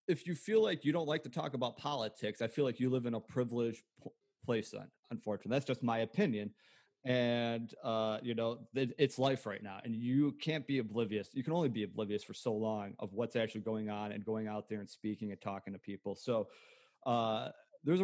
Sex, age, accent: male, 30-49, American